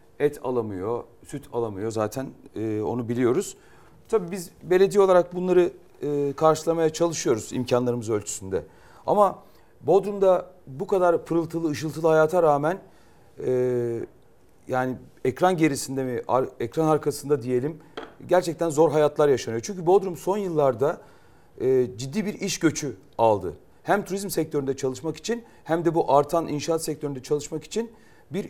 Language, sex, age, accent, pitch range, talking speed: Turkish, male, 40-59, native, 135-180 Hz, 120 wpm